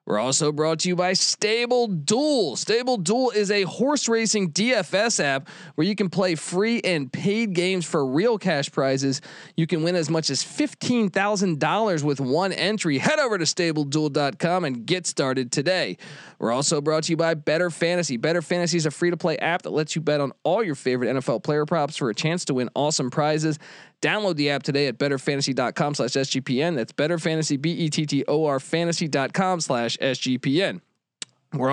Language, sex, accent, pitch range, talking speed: English, male, American, 145-190 Hz, 200 wpm